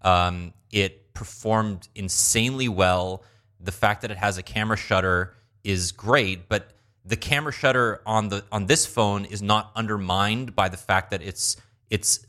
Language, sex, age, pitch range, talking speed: English, male, 30-49, 95-115 Hz, 160 wpm